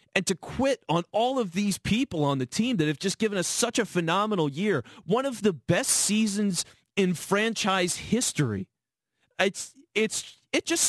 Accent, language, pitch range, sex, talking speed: American, English, 145-215 Hz, male, 175 wpm